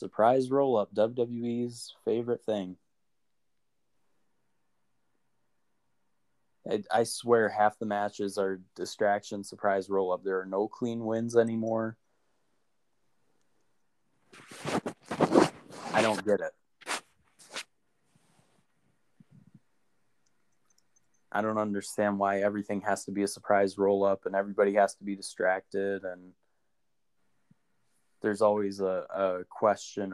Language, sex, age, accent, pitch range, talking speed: English, male, 20-39, American, 95-115 Hz, 95 wpm